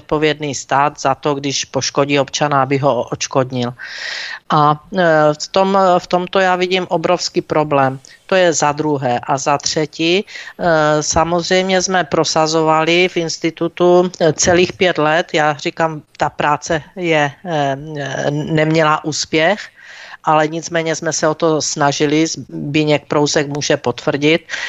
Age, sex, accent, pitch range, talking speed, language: 50-69, female, native, 145-165 Hz, 125 wpm, Czech